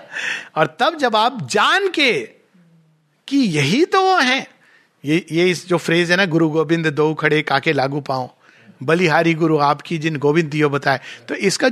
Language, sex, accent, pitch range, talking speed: Hindi, male, native, 165-225 Hz, 165 wpm